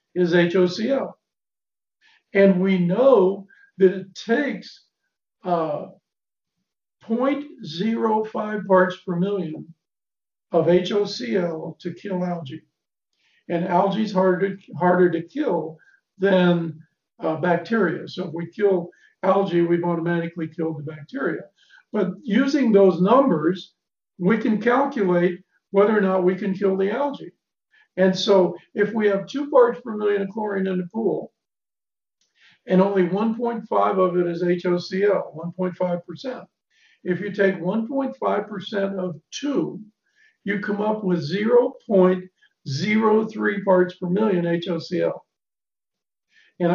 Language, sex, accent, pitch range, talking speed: English, male, American, 175-215 Hz, 115 wpm